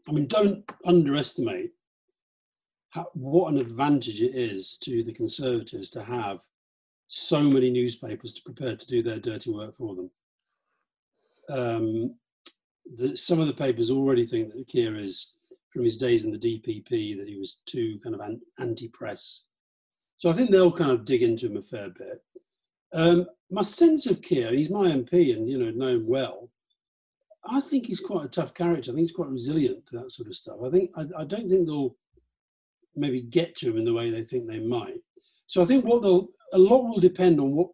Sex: male